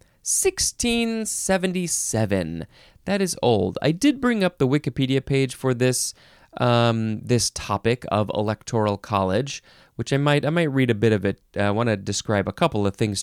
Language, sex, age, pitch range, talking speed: English, male, 30-49, 105-150 Hz, 170 wpm